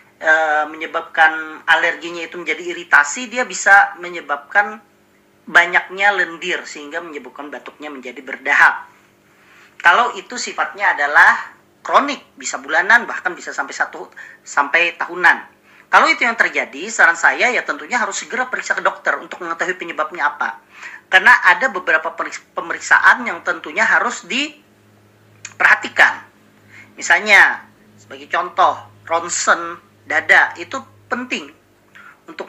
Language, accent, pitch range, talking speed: Indonesian, native, 155-220 Hz, 115 wpm